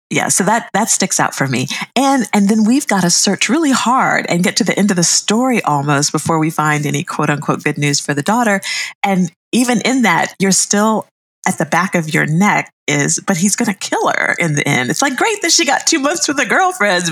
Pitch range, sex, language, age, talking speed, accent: 160-245 Hz, female, English, 50-69, 245 wpm, American